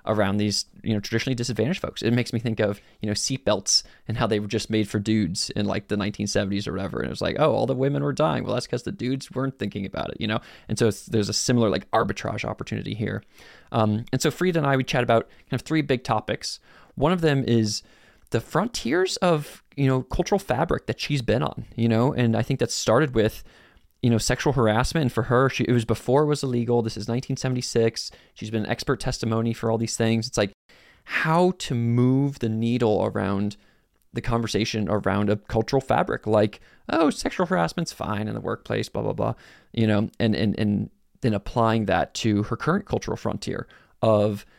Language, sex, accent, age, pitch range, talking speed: English, male, American, 20-39, 110-130 Hz, 215 wpm